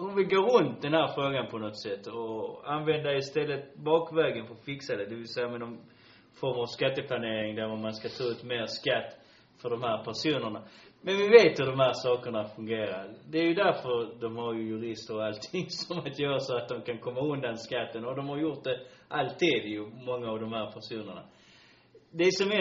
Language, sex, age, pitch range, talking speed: Swedish, male, 30-49, 115-160 Hz, 210 wpm